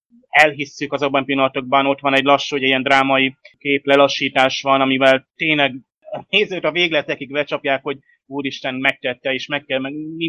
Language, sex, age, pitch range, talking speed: Hungarian, male, 30-49, 130-145 Hz, 155 wpm